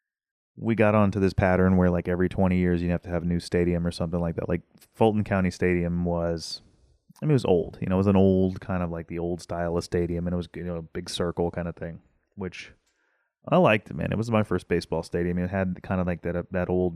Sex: male